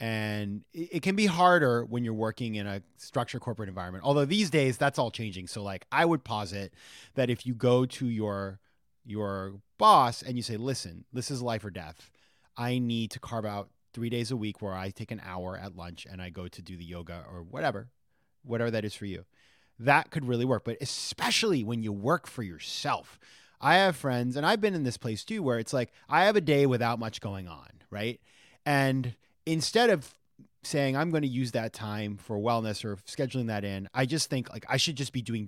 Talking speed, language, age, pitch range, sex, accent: 220 wpm, English, 30-49, 105-150 Hz, male, American